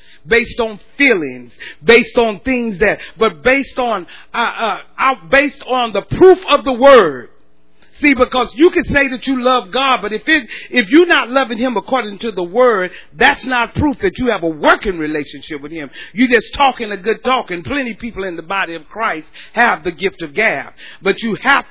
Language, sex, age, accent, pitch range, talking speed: English, male, 40-59, American, 190-260 Hz, 205 wpm